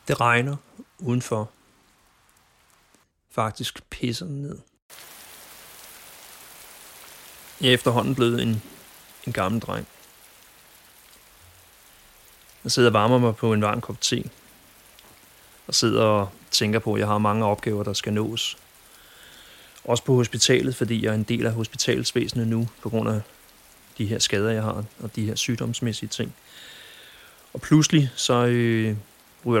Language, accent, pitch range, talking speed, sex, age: Danish, native, 105-120 Hz, 130 wpm, male, 30-49